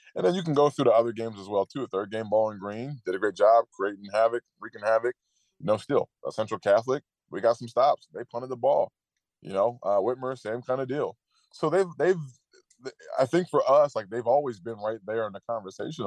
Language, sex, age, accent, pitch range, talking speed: English, male, 20-39, American, 110-135 Hz, 240 wpm